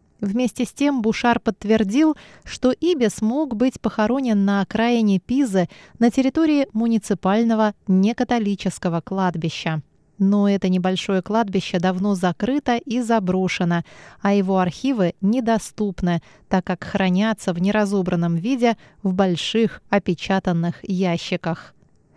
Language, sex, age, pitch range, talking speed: Russian, female, 20-39, 185-235 Hz, 110 wpm